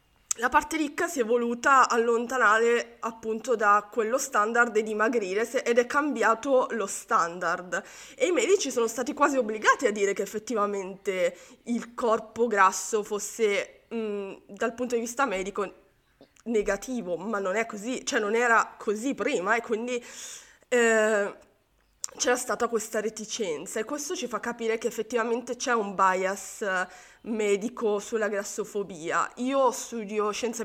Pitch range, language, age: 205-245 Hz, Italian, 20-39